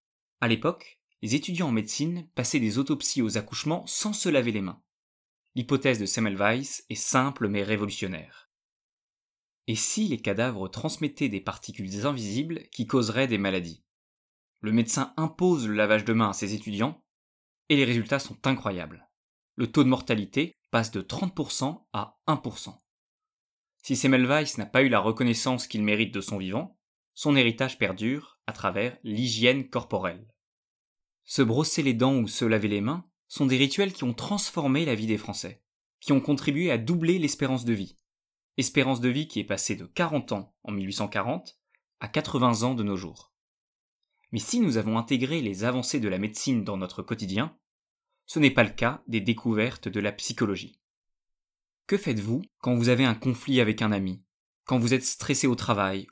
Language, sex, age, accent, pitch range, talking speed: French, male, 20-39, French, 105-135 Hz, 170 wpm